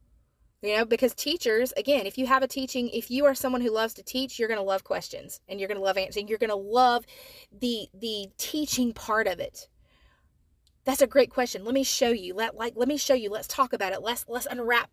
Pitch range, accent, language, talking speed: 230-300 Hz, American, English, 240 wpm